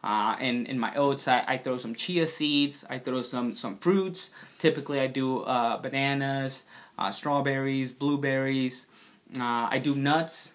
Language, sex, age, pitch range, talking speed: English, male, 20-39, 130-150 Hz, 160 wpm